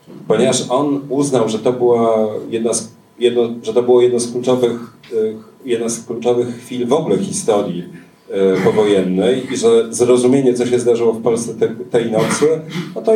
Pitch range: 115-135 Hz